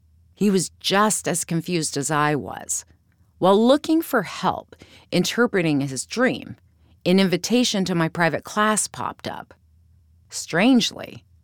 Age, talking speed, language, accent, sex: 40-59, 125 wpm, English, American, female